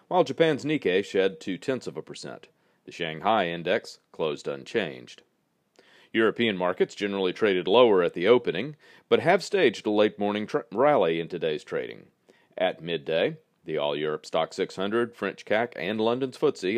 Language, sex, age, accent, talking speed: English, male, 40-59, American, 145 wpm